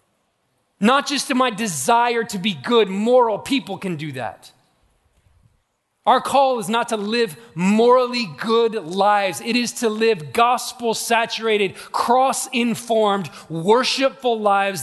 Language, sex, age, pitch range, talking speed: English, male, 30-49, 160-220 Hz, 120 wpm